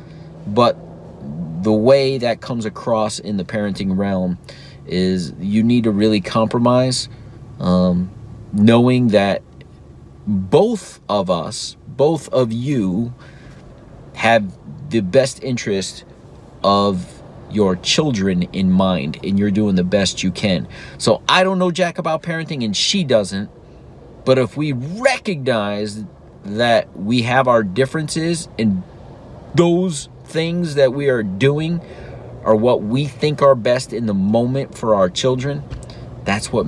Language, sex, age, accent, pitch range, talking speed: English, male, 40-59, American, 105-135 Hz, 135 wpm